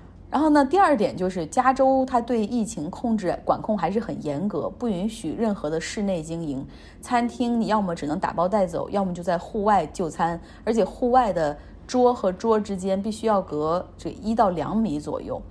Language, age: Chinese, 30-49